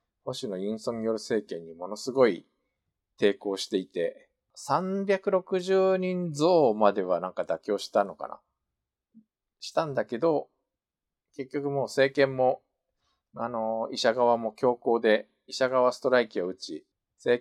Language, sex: Japanese, male